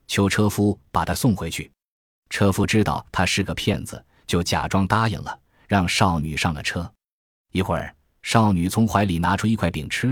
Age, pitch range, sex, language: 20-39, 85-115 Hz, male, Chinese